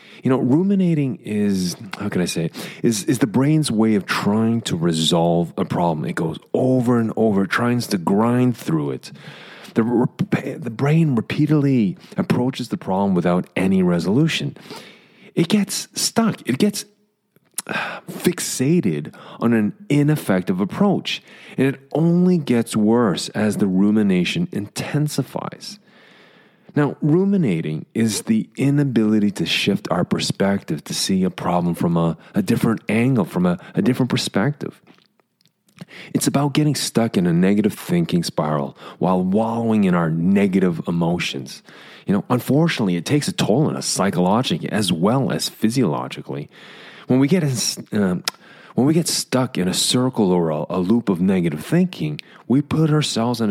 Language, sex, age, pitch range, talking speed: English, male, 30-49, 105-175 Hz, 145 wpm